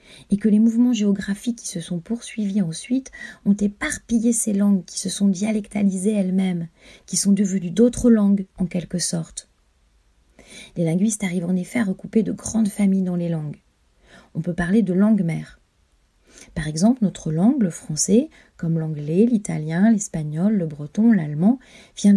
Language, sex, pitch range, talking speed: French, female, 170-215 Hz, 160 wpm